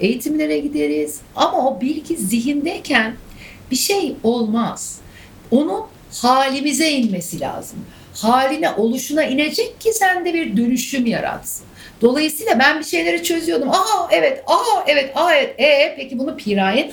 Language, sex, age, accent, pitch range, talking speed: Turkish, female, 60-79, native, 190-300 Hz, 130 wpm